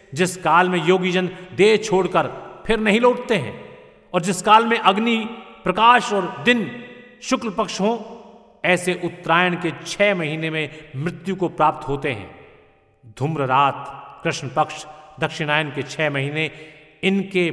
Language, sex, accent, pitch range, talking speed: Hindi, male, native, 150-195 Hz, 140 wpm